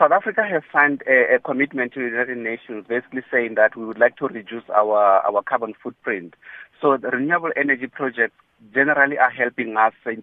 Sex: male